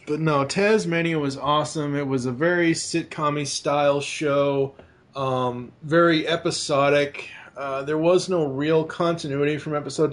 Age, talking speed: 20-39, 140 wpm